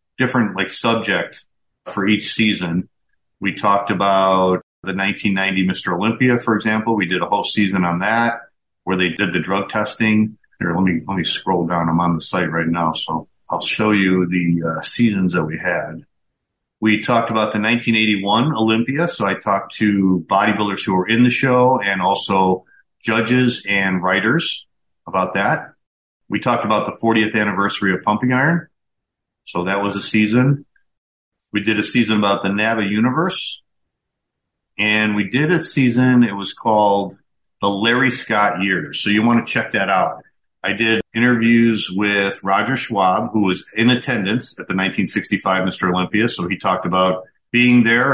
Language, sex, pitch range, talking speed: English, male, 95-115 Hz, 170 wpm